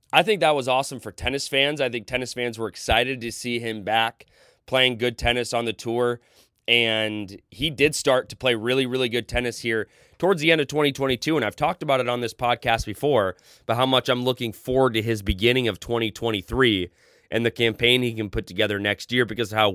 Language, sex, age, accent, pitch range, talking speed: English, male, 20-39, American, 105-125 Hz, 220 wpm